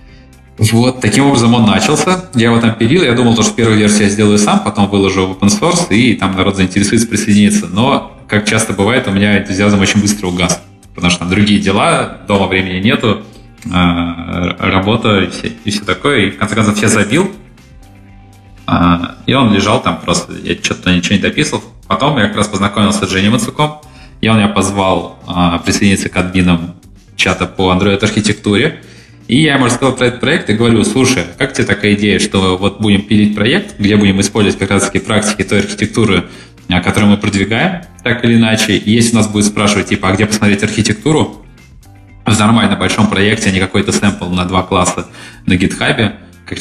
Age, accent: 20-39, native